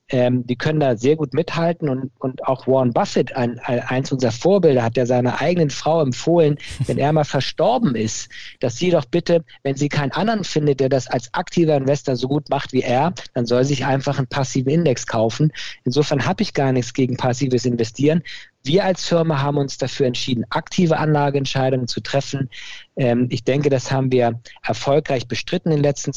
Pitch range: 125-150 Hz